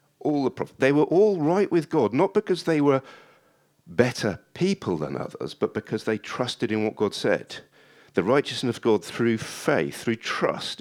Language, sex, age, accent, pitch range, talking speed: English, male, 50-69, British, 95-140 Hz, 185 wpm